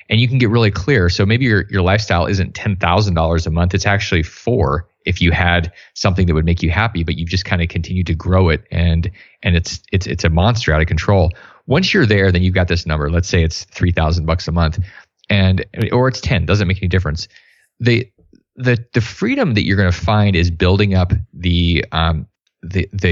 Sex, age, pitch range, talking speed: male, 20-39, 85-110 Hz, 225 wpm